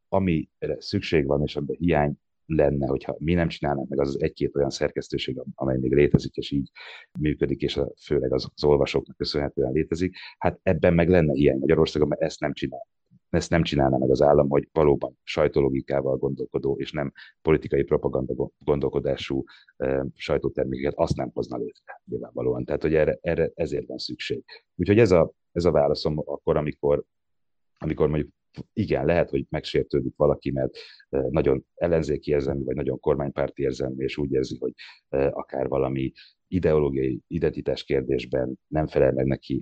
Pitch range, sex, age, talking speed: 65-75 Hz, male, 30-49, 160 wpm